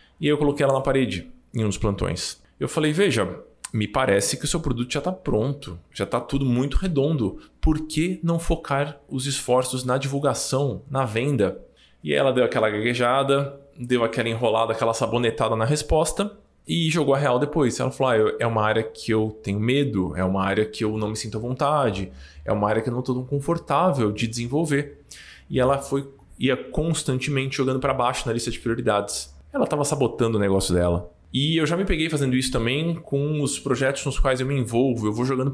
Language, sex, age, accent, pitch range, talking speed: Portuguese, male, 20-39, Brazilian, 115-145 Hz, 210 wpm